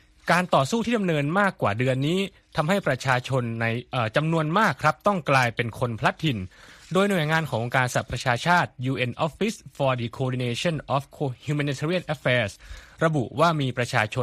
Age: 20-39